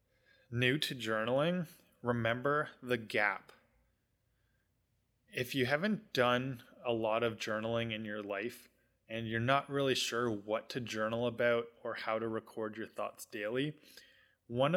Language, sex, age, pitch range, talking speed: English, male, 20-39, 110-125 Hz, 140 wpm